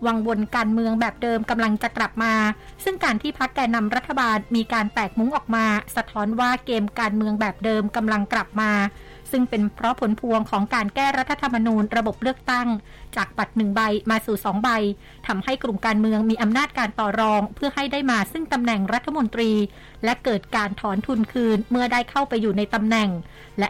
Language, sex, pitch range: Thai, female, 215-250 Hz